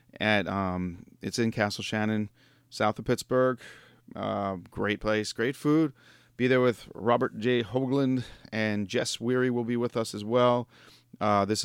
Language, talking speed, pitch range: English, 160 wpm, 110-125 Hz